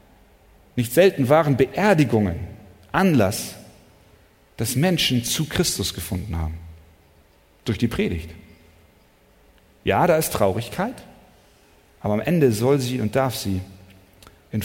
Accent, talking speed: German, 110 wpm